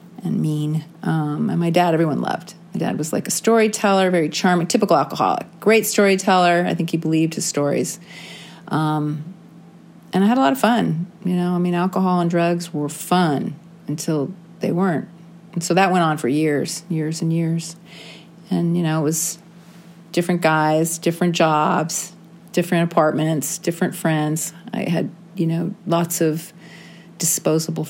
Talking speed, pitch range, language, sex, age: 165 wpm, 160-185 Hz, English, female, 40-59